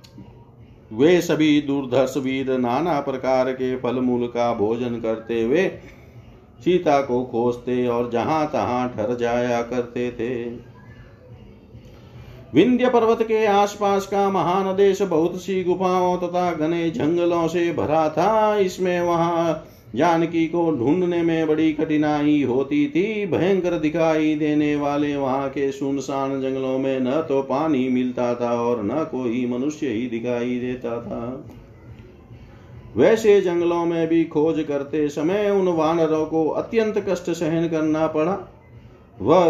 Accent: native